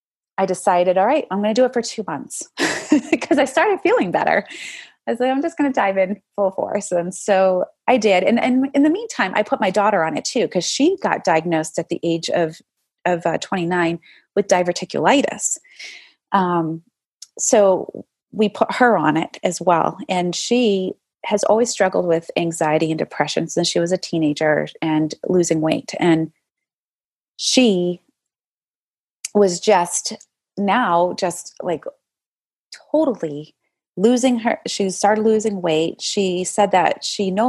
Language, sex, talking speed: English, female, 165 wpm